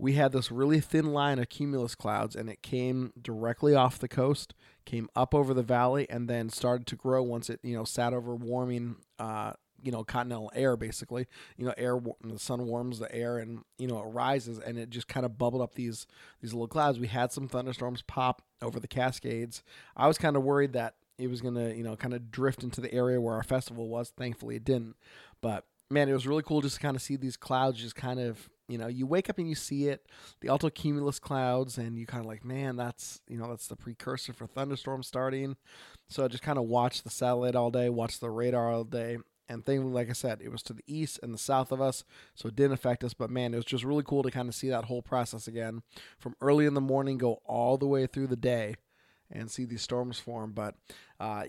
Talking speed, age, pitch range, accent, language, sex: 245 wpm, 30-49, 115-135 Hz, American, English, male